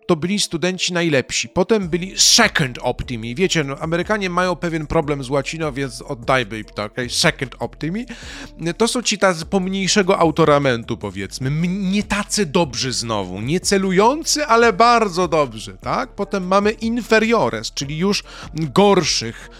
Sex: male